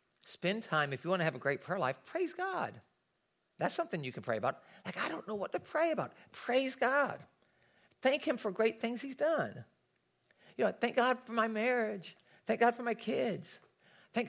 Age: 50-69